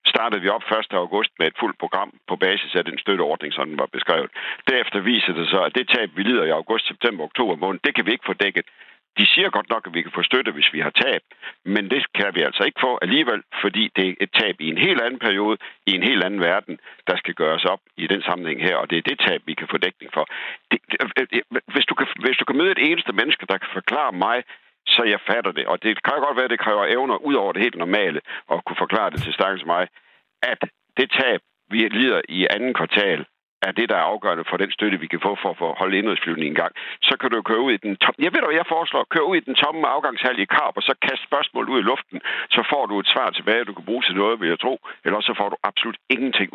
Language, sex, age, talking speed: Danish, male, 60-79, 250 wpm